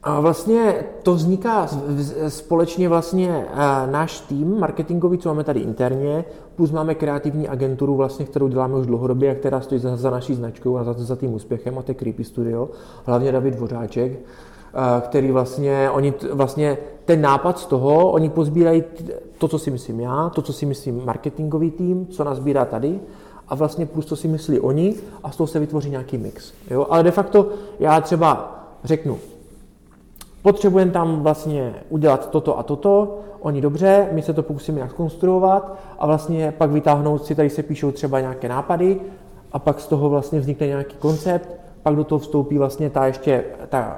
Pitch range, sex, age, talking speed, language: 135-165 Hz, male, 40-59, 175 wpm, Czech